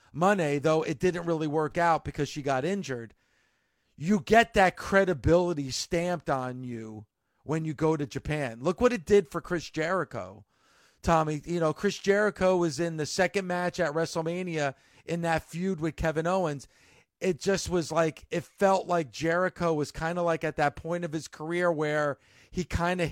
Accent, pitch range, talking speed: American, 145-180 Hz, 180 wpm